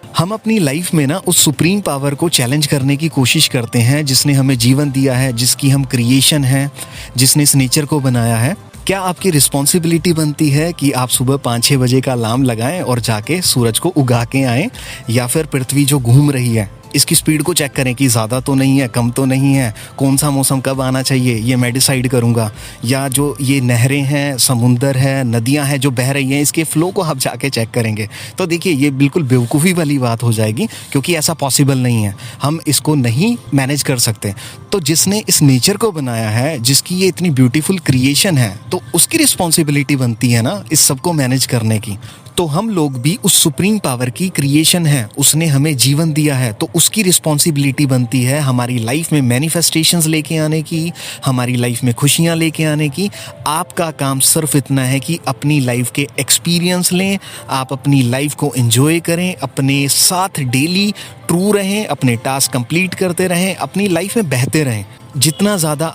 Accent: native